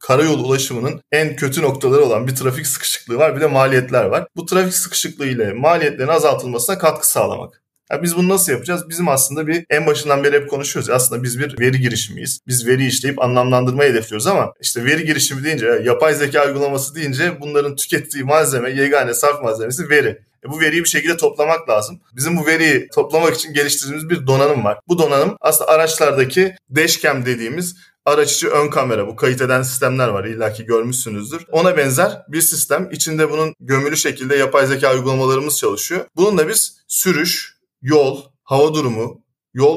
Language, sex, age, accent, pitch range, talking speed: Turkish, male, 30-49, native, 135-170 Hz, 175 wpm